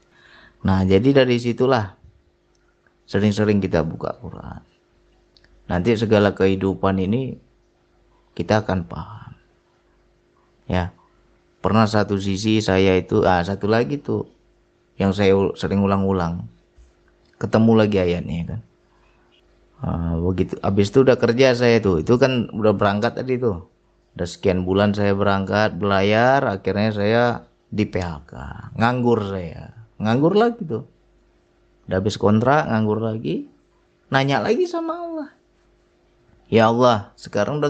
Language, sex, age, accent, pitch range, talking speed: Indonesian, male, 30-49, native, 95-125 Hz, 120 wpm